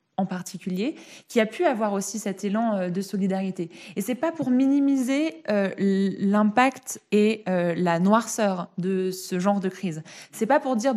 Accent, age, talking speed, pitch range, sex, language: French, 20-39, 170 wpm, 195-250 Hz, female, French